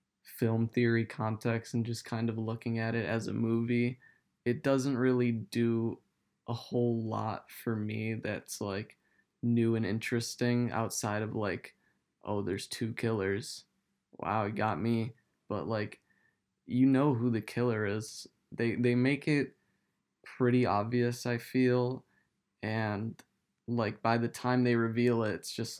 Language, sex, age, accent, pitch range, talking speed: English, male, 20-39, American, 110-120 Hz, 150 wpm